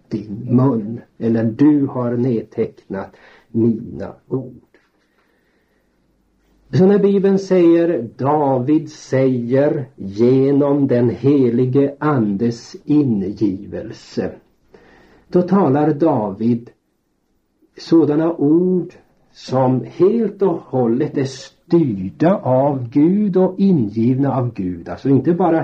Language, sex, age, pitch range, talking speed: Swedish, male, 60-79, 115-155 Hz, 90 wpm